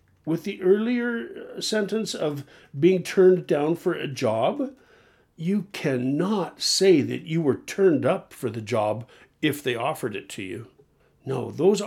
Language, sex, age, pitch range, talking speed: English, male, 50-69, 135-205 Hz, 150 wpm